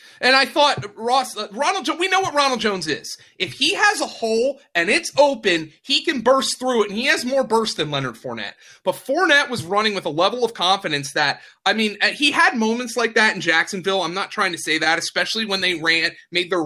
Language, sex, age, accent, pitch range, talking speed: English, male, 30-49, American, 155-235 Hz, 225 wpm